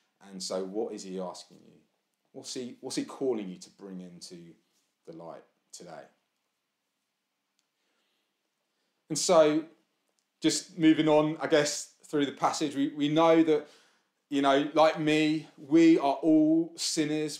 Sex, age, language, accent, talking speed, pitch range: male, 30-49, English, British, 140 wpm, 140-195 Hz